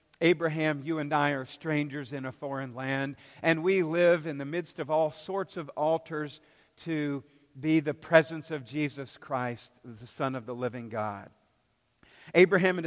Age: 50-69